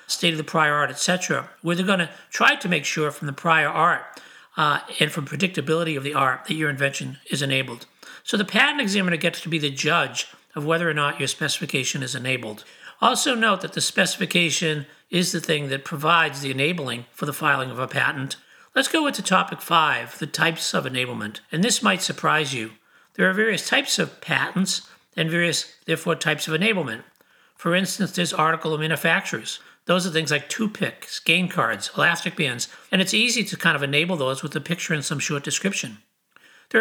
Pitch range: 145-180 Hz